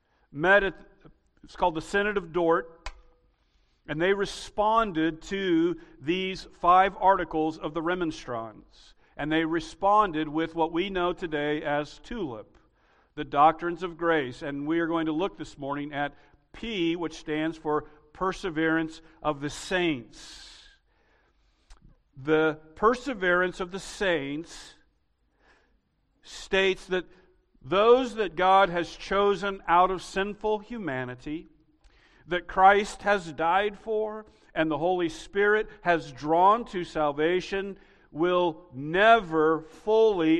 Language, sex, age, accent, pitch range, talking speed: English, male, 50-69, American, 150-190 Hz, 120 wpm